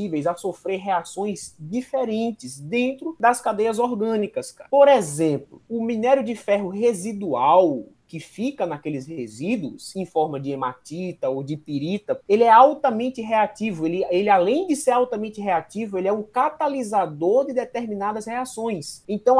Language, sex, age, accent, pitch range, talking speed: Portuguese, male, 20-39, Brazilian, 185-260 Hz, 140 wpm